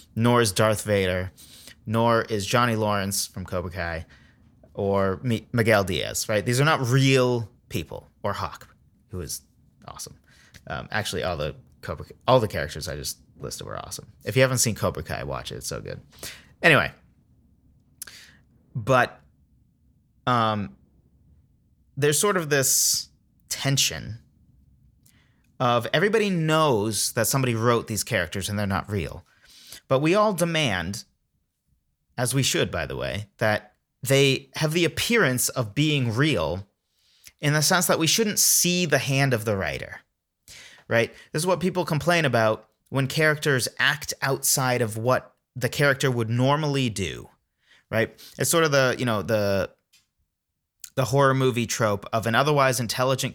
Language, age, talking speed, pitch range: English, 30-49, 150 wpm, 105-140 Hz